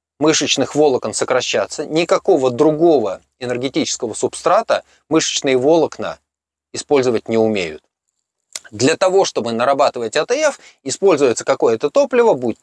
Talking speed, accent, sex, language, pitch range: 100 wpm, native, male, Russian, 125-205 Hz